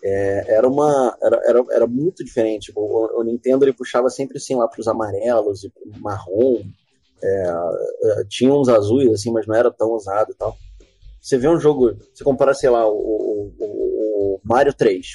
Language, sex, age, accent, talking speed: Portuguese, male, 20-39, Brazilian, 160 wpm